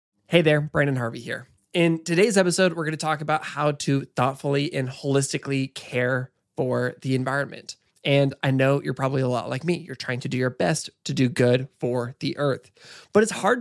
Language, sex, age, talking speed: English, male, 20-39, 205 wpm